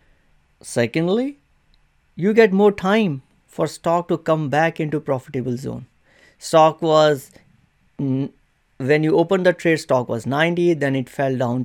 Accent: Indian